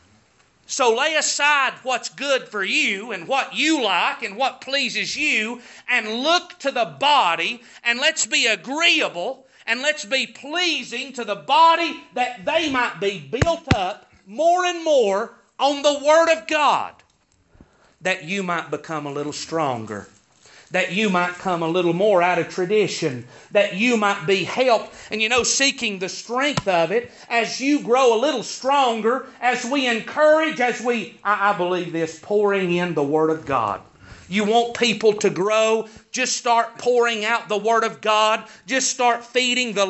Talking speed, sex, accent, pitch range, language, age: 170 wpm, male, American, 195-265 Hz, English, 40-59